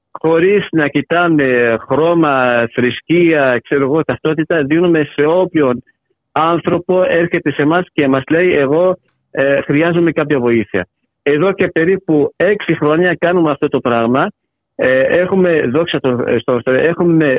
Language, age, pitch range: Greek, 50-69, 135-170 Hz